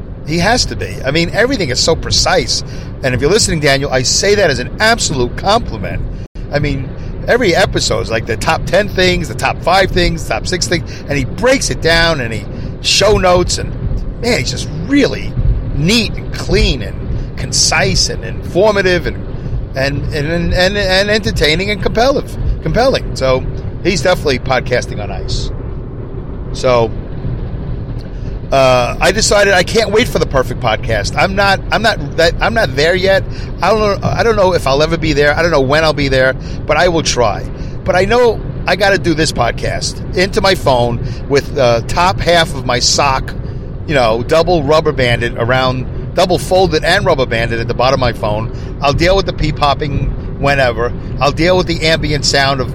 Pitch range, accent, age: 125-170 Hz, American, 50-69